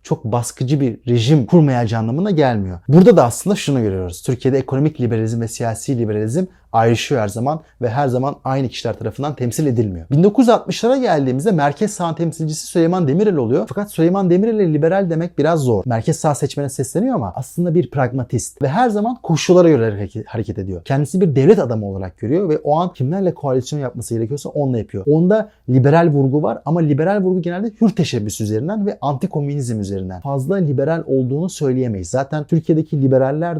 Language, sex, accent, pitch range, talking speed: Turkish, male, native, 125-175 Hz, 170 wpm